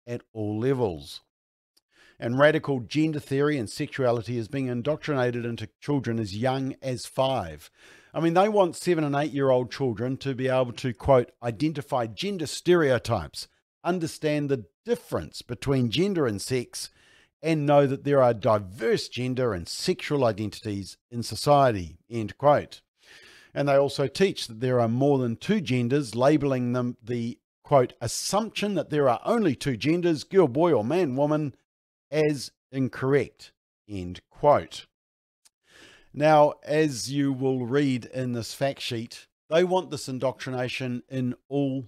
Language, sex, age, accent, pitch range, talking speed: English, male, 50-69, Australian, 120-150 Hz, 145 wpm